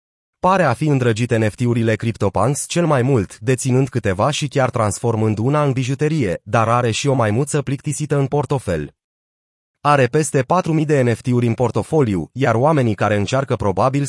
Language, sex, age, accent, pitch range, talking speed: Romanian, male, 30-49, native, 115-150 Hz, 160 wpm